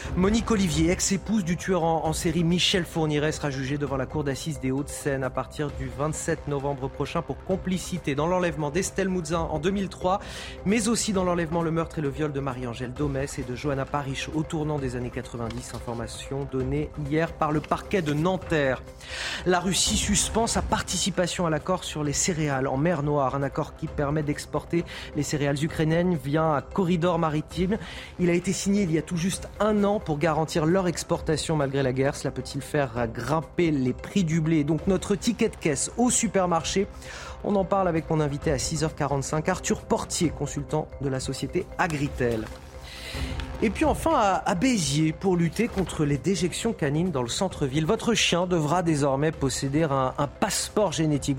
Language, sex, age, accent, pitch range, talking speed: French, male, 30-49, French, 140-185 Hz, 185 wpm